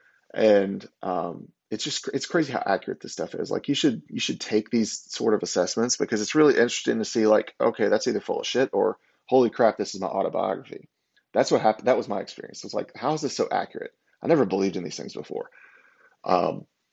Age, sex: 30-49, male